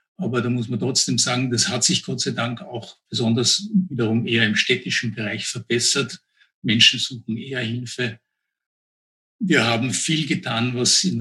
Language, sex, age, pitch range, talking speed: German, male, 60-79, 115-145 Hz, 160 wpm